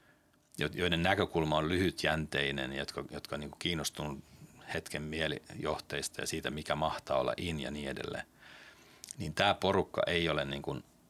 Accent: native